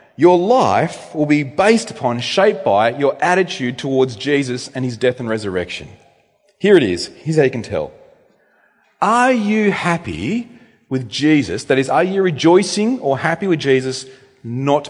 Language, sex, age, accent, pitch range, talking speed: English, male, 40-59, Australian, 140-215 Hz, 160 wpm